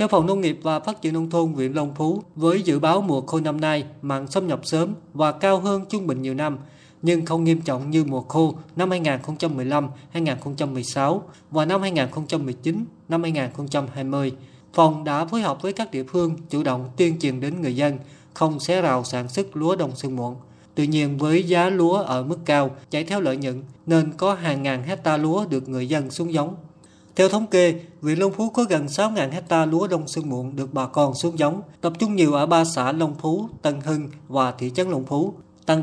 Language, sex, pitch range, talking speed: Vietnamese, male, 140-170 Hz, 210 wpm